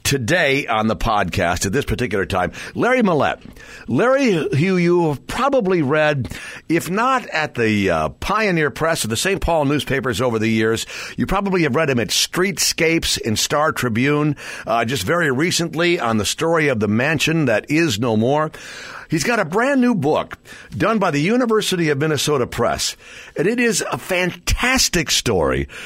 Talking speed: 170 wpm